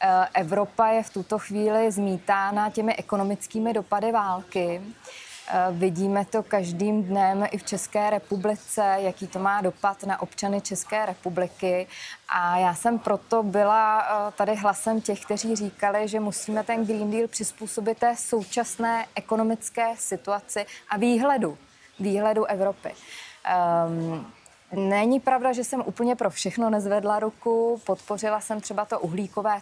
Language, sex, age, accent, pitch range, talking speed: Czech, female, 20-39, native, 190-215 Hz, 130 wpm